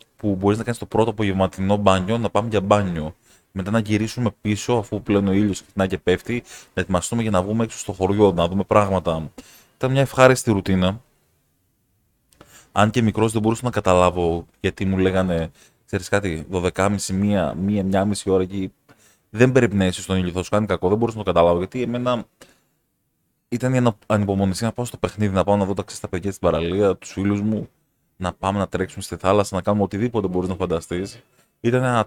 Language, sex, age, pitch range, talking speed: Greek, male, 20-39, 95-115 Hz, 195 wpm